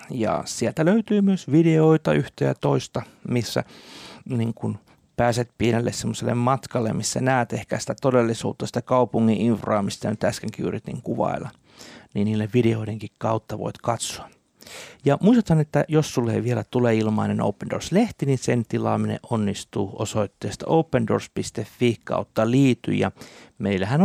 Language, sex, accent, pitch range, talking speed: Finnish, male, native, 110-140 Hz, 130 wpm